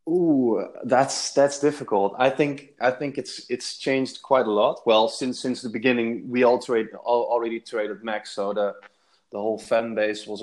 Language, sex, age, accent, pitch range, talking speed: English, male, 20-39, Dutch, 105-130 Hz, 190 wpm